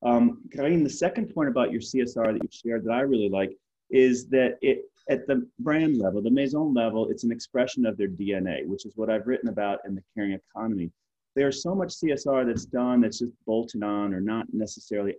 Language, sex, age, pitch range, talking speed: English, male, 30-49, 100-130 Hz, 210 wpm